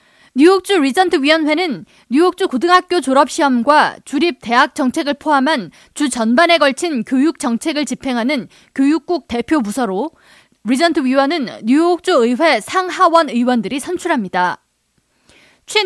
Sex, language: female, Korean